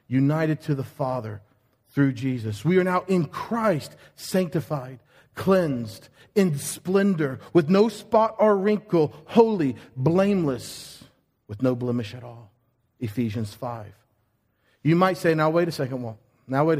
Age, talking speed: 40-59, 140 wpm